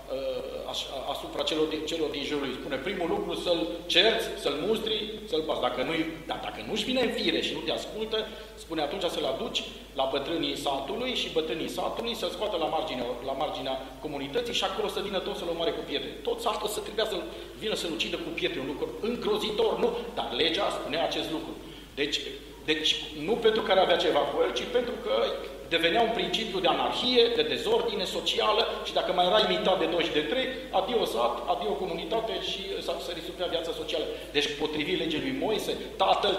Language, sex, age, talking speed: Romanian, male, 40-59, 195 wpm